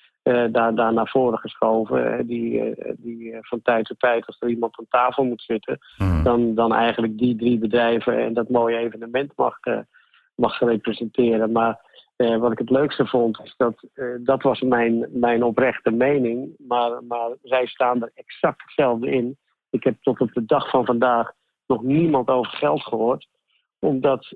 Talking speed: 180 wpm